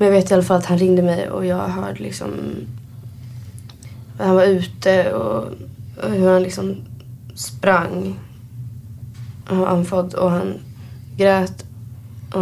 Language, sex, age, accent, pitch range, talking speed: Swedish, female, 20-39, native, 115-180 Hz, 140 wpm